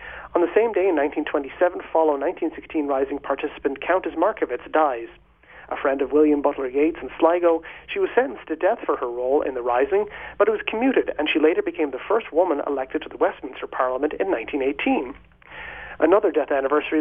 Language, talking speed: English, 185 wpm